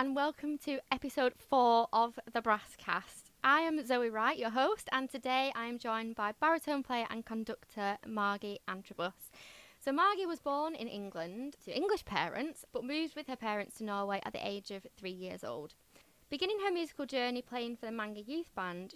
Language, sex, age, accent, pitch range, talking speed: English, female, 20-39, British, 200-265 Hz, 190 wpm